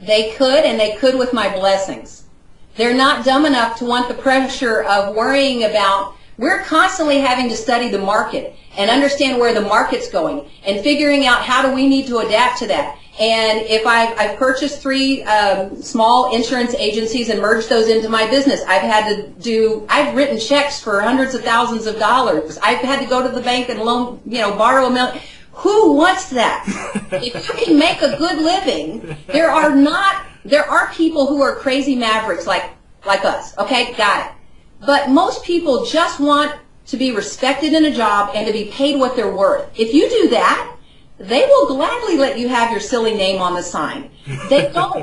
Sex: female